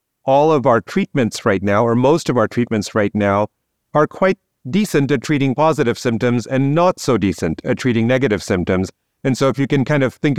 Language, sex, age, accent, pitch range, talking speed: English, male, 40-59, American, 110-135 Hz, 210 wpm